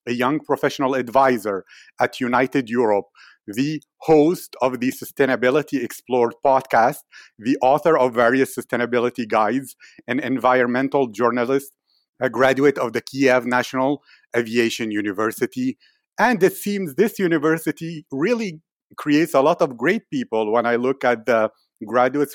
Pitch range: 120-145 Hz